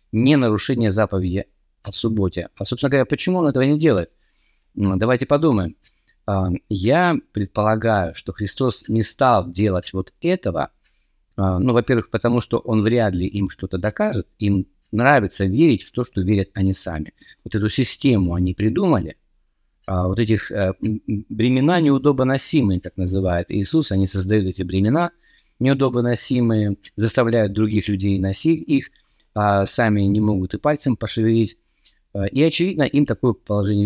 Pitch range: 100-130 Hz